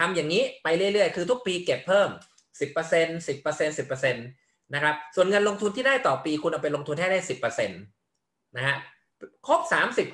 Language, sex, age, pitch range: Thai, male, 20-39, 130-175 Hz